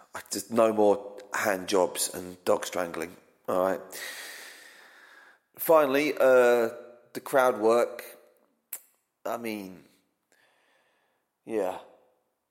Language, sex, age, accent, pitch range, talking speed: English, male, 30-49, British, 105-140 Hz, 90 wpm